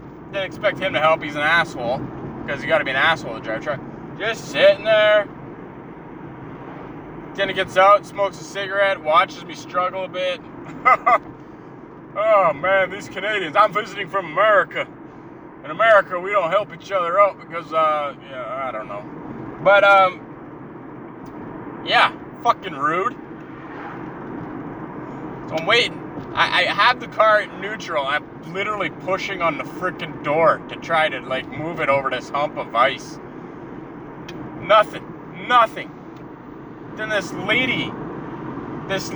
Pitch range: 165-225 Hz